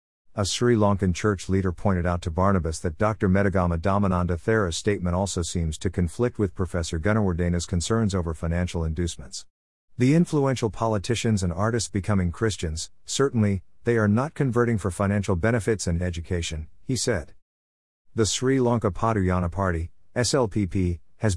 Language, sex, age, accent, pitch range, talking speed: English, male, 50-69, American, 90-110 Hz, 145 wpm